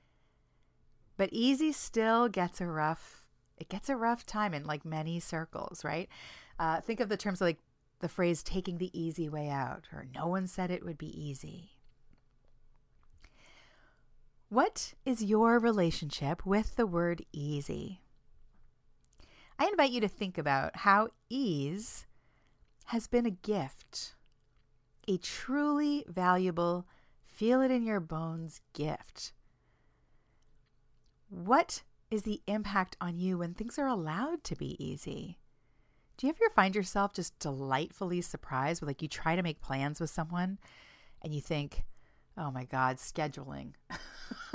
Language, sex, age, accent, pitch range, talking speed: English, female, 40-59, American, 155-210 Hz, 135 wpm